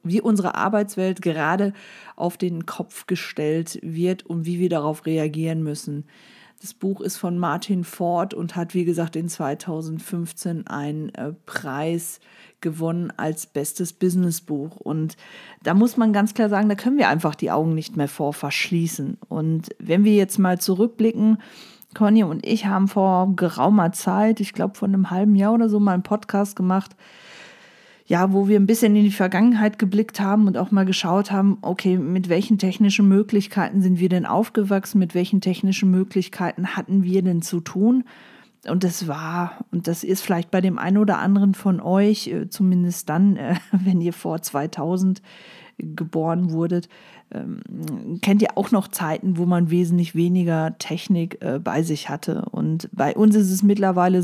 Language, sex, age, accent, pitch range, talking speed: German, female, 40-59, German, 170-205 Hz, 165 wpm